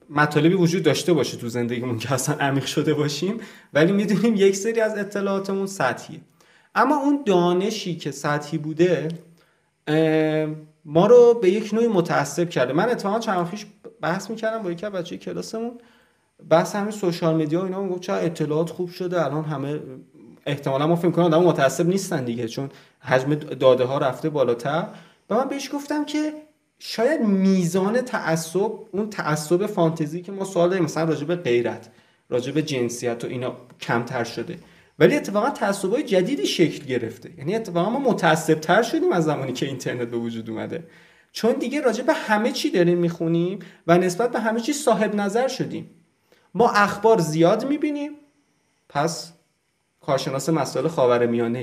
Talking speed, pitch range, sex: 160 wpm, 155-205 Hz, male